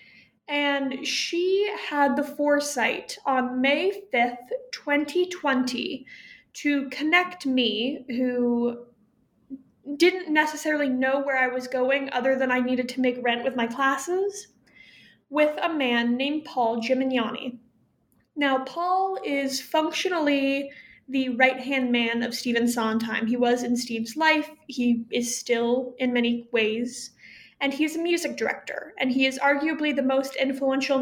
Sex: female